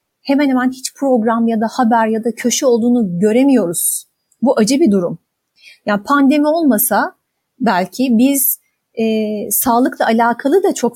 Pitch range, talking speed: 195-260 Hz, 140 wpm